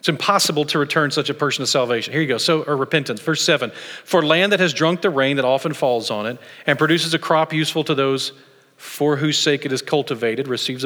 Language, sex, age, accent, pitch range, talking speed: English, male, 40-59, American, 135-170 Hz, 240 wpm